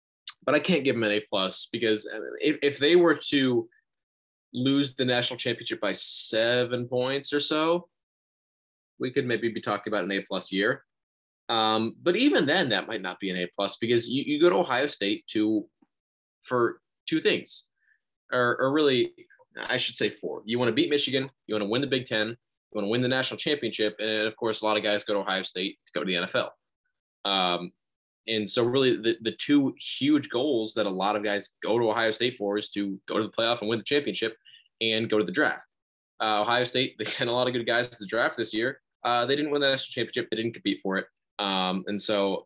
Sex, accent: male, American